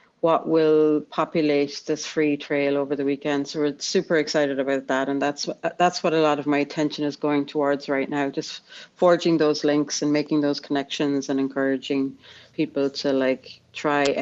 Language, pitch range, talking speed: English, 140-160 Hz, 180 wpm